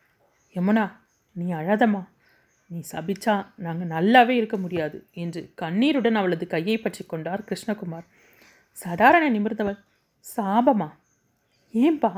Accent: native